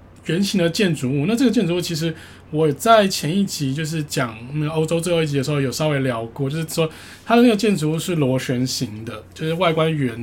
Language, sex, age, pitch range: Chinese, male, 20-39, 135-170 Hz